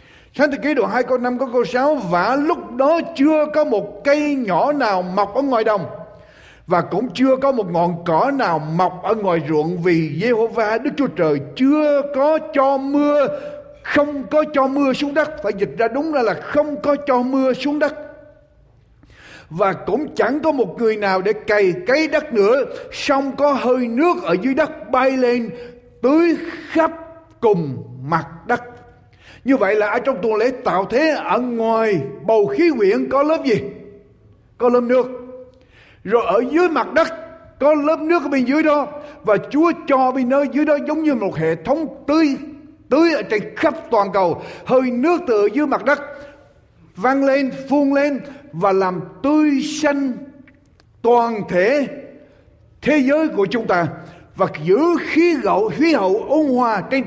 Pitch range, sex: 220-295 Hz, male